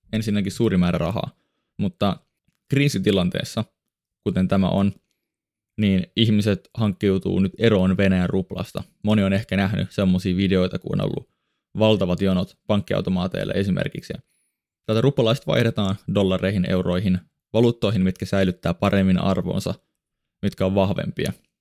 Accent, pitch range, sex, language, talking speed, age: native, 95-110 Hz, male, Finnish, 115 wpm, 20-39